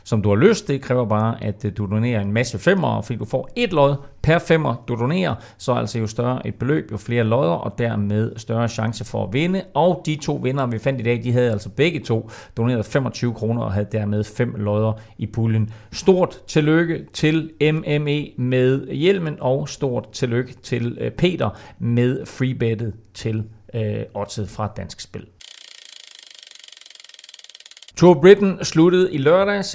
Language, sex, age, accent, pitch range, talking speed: Danish, male, 40-59, native, 110-140 Hz, 175 wpm